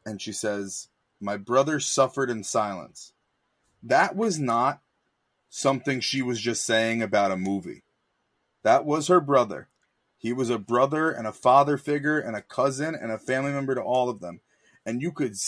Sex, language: male, English